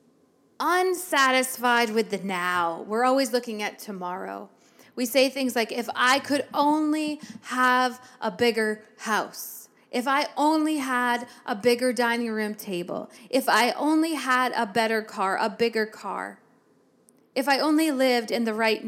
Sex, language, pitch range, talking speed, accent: female, English, 220-275 Hz, 150 wpm, American